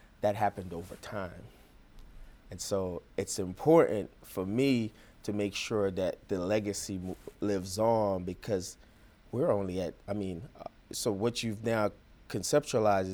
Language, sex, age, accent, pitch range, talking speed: English, male, 30-49, American, 90-105 Hz, 130 wpm